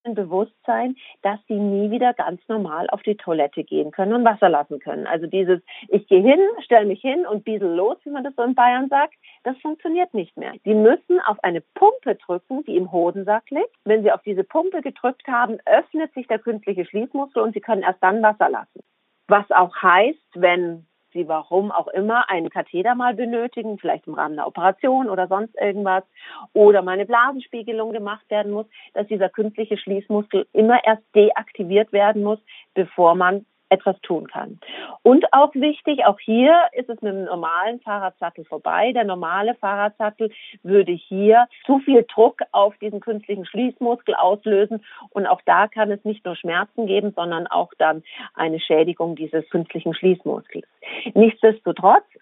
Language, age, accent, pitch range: German, 40-59, German, 190-240 Hz